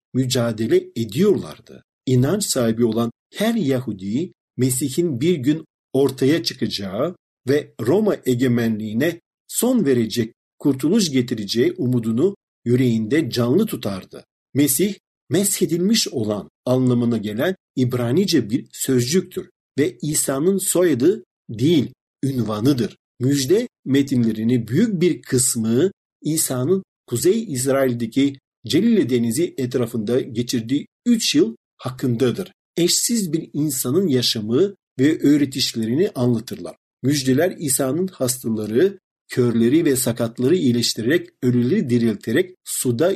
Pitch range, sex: 120-170 Hz, male